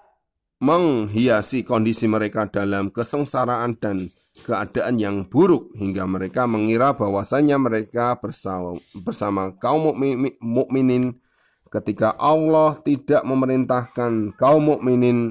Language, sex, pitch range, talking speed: Indonesian, male, 105-130 Hz, 90 wpm